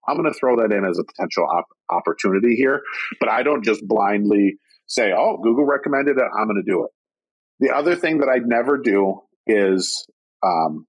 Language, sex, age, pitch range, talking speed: English, male, 50-69, 105-145 Hz, 195 wpm